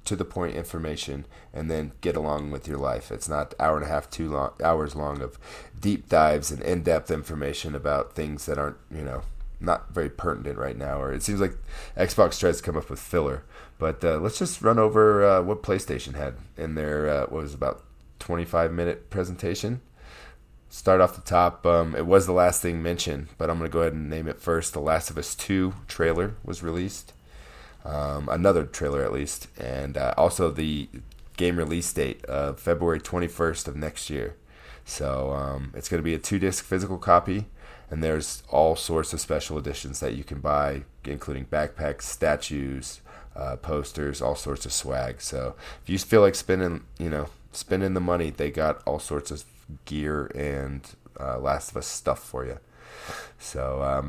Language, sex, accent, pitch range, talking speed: English, male, American, 70-85 Hz, 190 wpm